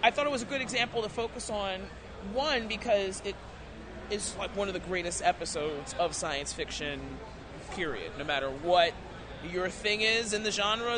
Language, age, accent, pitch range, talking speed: English, 30-49, American, 185-235 Hz, 180 wpm